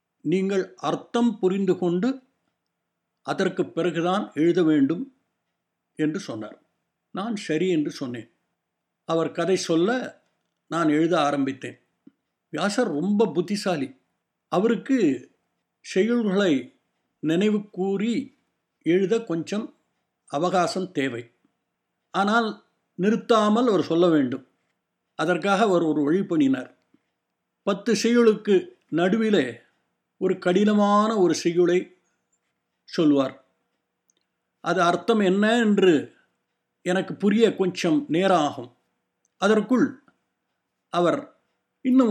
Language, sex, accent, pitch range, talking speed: Tamil, male, native, 155-220 Hz, 85 wpm